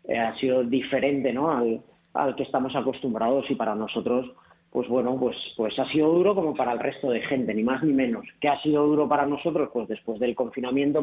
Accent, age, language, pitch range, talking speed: Spanish, 30-49, Spanish, 135-155 Hz, 210 wpm